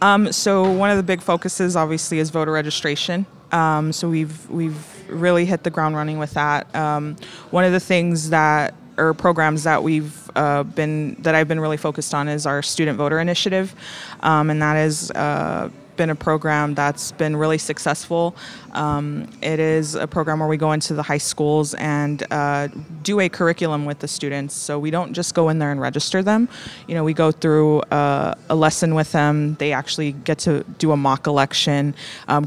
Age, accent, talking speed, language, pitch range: 20-39, American, 195 wpm, English, 145-165 Hz